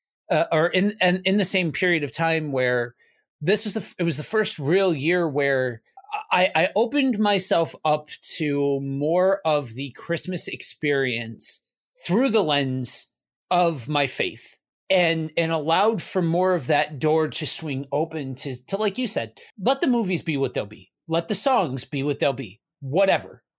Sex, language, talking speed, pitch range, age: male, English, 175 wpm, 150-210 Hz, 30-49